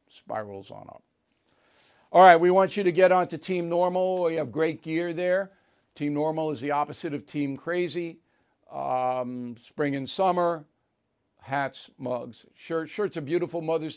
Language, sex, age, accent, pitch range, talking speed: English, male, 50-69, American, 145-175 Hz, 165 wpm